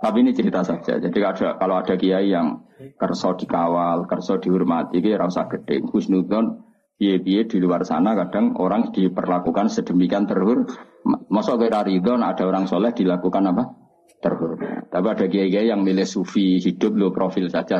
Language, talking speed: Malay, 155 wpm